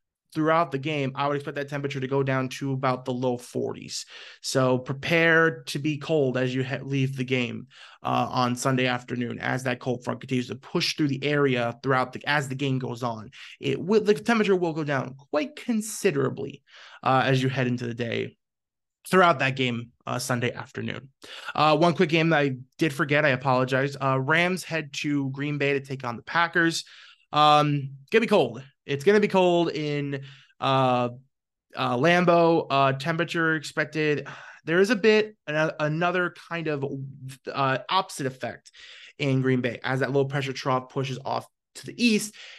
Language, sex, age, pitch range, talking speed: English, male, 20-39, 130-170 Hz, 185 wpm